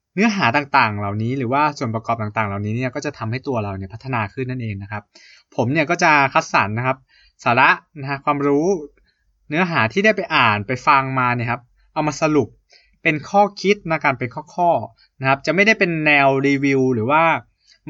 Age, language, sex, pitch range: 20-39, Thai, male, 115-150 Hz